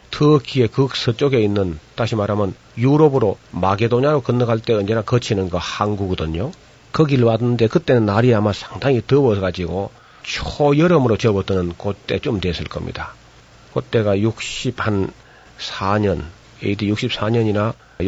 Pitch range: 95-120 Hz